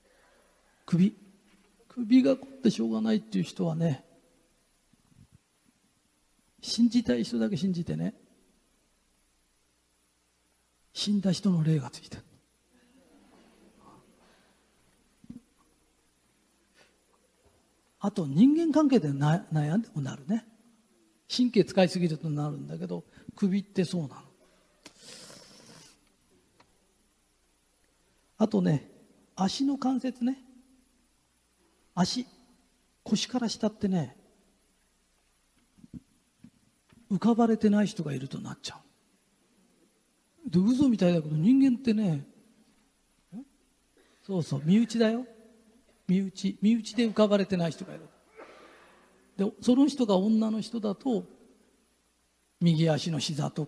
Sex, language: male, Japanese